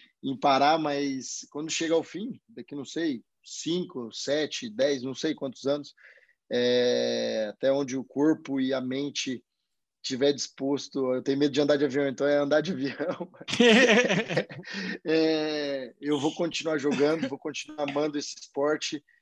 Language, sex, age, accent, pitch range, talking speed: Portuguese, male, 20-39, Brazilian, 140-175 Hz, 155 wpm